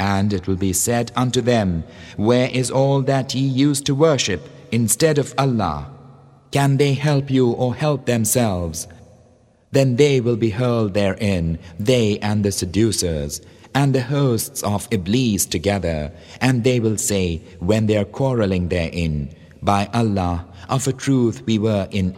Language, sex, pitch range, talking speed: English, male, 90-125 Hz, 155 wpm